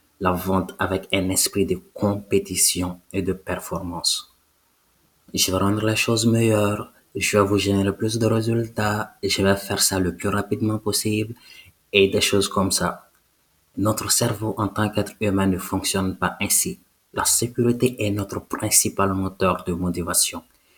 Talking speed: 155 wpm